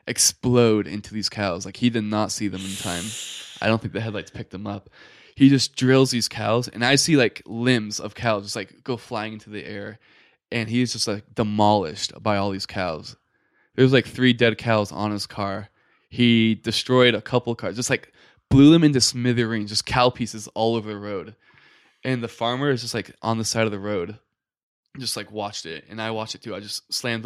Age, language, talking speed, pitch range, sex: 10-29, English, 215 wpm, 105-120 Hz, male